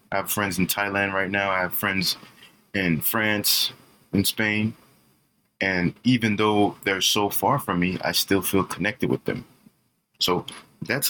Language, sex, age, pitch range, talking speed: English, male, 20-39, 90-110 Hz, 160 wpm